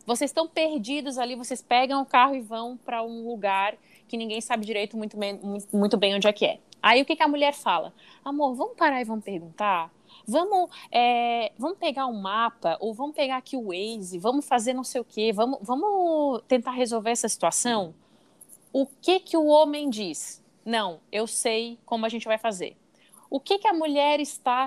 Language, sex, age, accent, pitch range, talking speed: Portuguese, female, 20-39, Brazilian, 230-285 Hz, 195 wpm